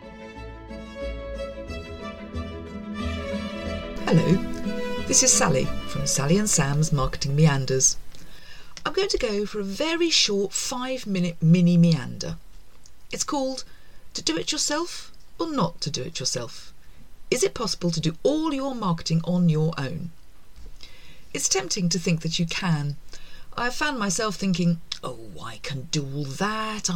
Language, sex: English, female